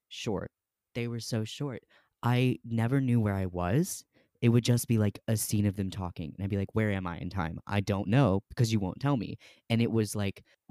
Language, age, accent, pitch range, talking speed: English, 20-39, American, 95-120 Hz, 235 wpm